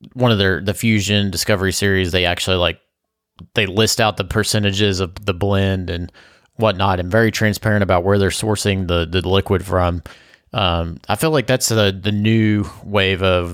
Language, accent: English, American